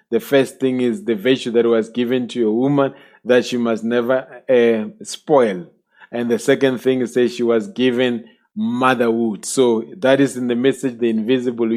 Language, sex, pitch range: English, male, 120-145 Hz